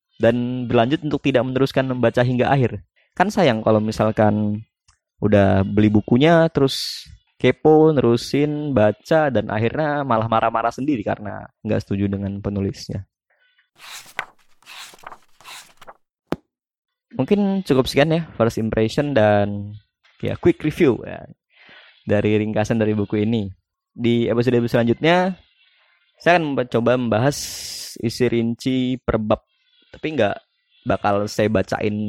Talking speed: 110 wpm